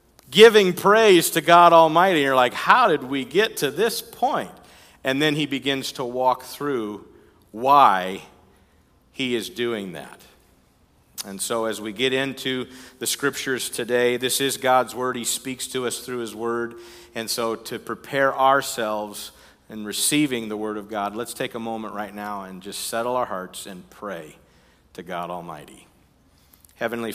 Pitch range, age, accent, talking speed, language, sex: 95-125 Hz, 50-69, American, 165 wpm, English, male